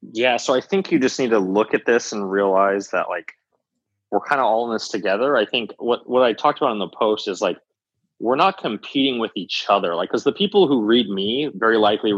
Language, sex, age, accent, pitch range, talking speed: English, male, 20-39, American, 100-135 Hz, 240 wpm